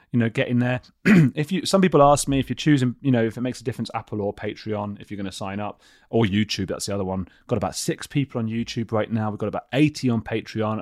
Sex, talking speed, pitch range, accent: male, 270 wpm, 95-125 Hz, British